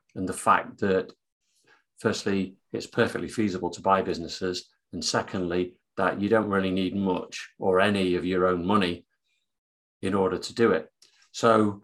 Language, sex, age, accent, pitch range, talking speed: English, male, 40-59, British, 90-105 Hz, 155 wpm